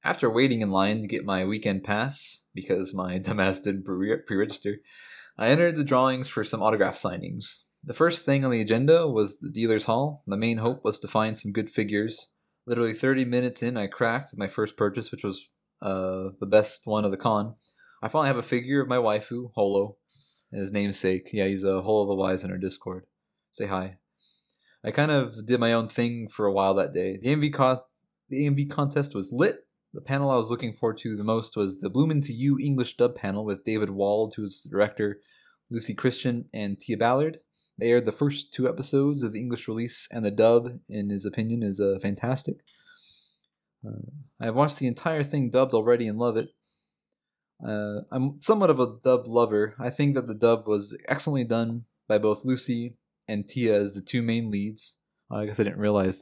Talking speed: 205 wpm